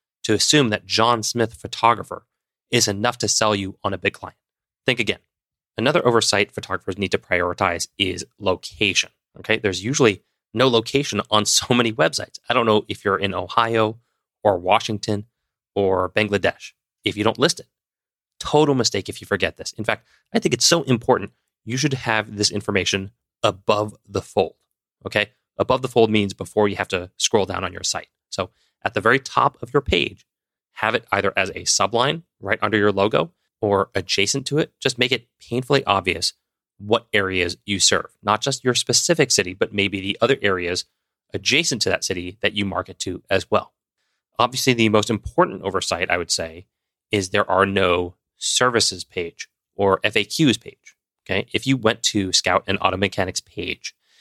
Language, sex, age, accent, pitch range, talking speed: English, male, 30-49, American, 100-120 Hz, 180 wpm